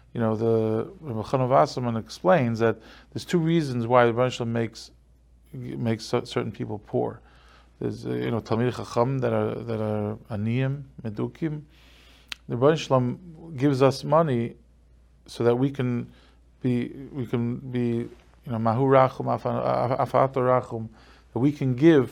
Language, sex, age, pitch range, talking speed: English, male, 40-59, 115-135 Hz, 135 wpm